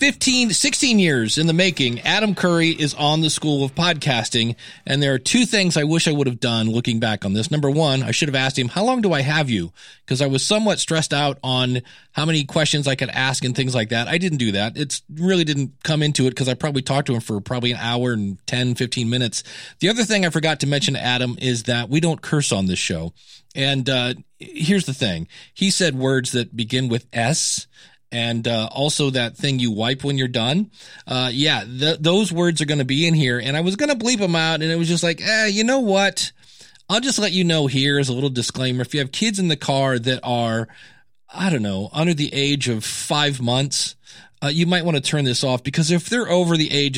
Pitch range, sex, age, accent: 120-160 Hz, male, 40-59, American